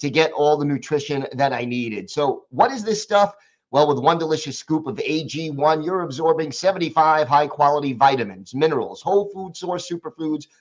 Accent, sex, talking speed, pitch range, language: American, male, 170 wpm, 130-160 Hz, English